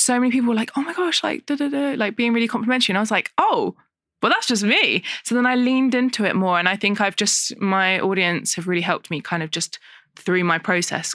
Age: 20-39